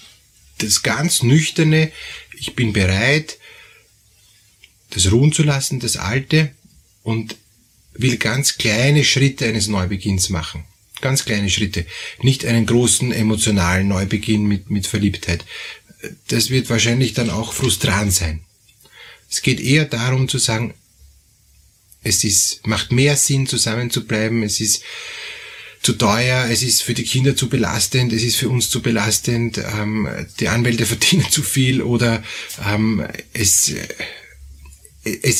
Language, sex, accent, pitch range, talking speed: German, male, Austrian, 105-130 Hz, 135 wpm